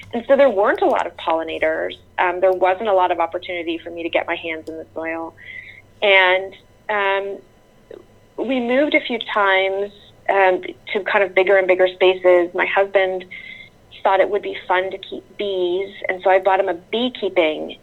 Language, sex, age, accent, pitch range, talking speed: English, female, 30-49, American, 175-205 Hz, 190 wpm